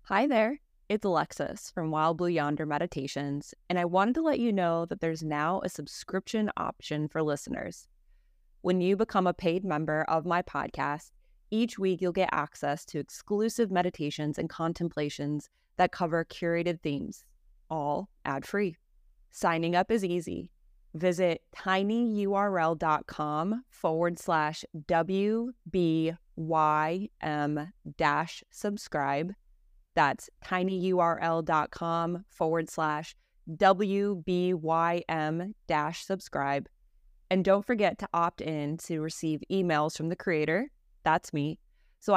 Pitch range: 155-195 Hz